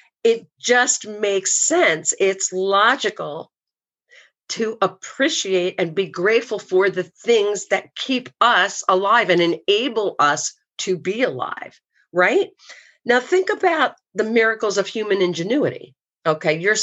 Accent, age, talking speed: American, 50-69, 125 wpm